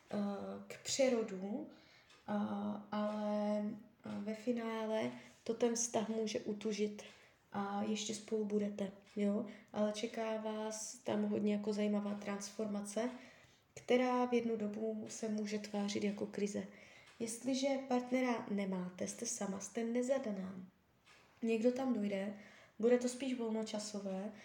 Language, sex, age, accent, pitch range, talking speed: Czech, female, 20-39, native, 205-235 Hz, 110 wpm